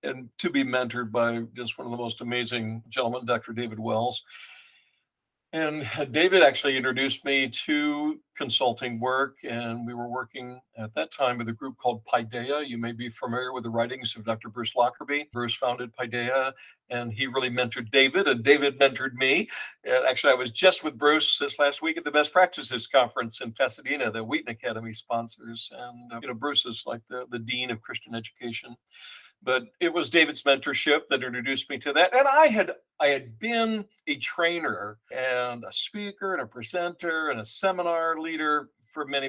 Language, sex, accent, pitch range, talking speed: English, male, American, 120-150 Hz, 185 wpm